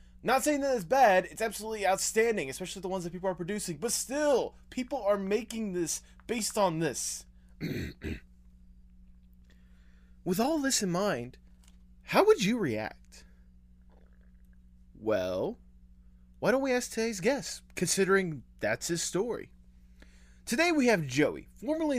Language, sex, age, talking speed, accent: English, male, 20-39, 135 wpm, American